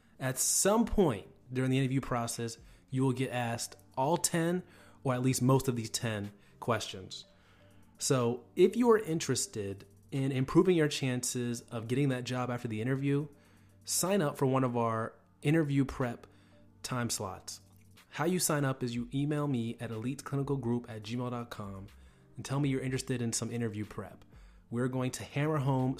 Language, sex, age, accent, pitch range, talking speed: English, male, 30-49, American, 105-130 Hz, 170 wpm